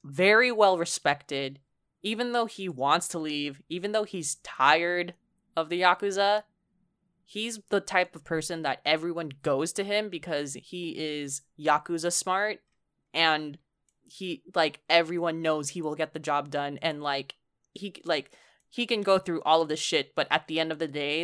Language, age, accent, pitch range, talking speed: English, 10-29, American, 145-190 Hz, 170 wpm